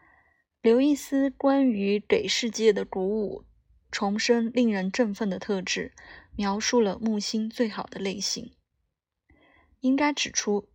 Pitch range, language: 195-240 Hz, Chinese